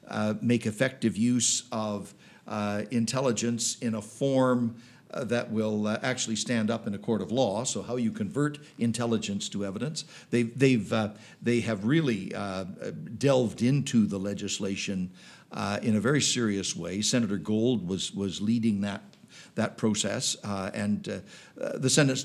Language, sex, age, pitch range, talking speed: English, male, 60-79, 105-125 Hz, 155 wpm